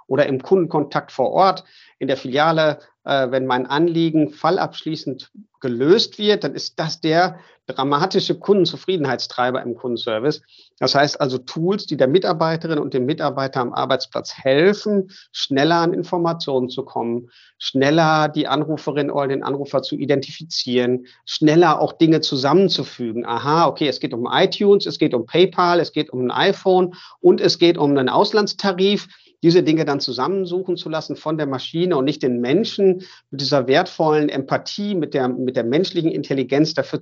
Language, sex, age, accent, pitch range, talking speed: German, male, 50-69, German, 130-165 Hz, 155 wpm